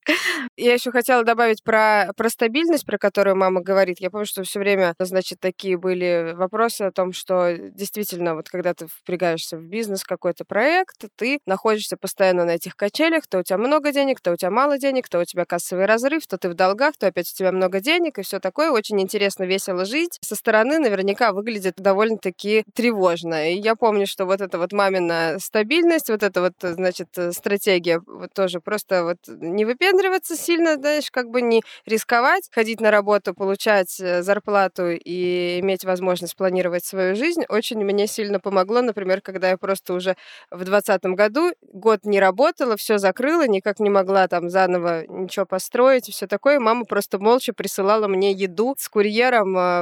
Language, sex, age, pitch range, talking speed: Russian, female, 20-39, 180-225 Hz, 180 wpm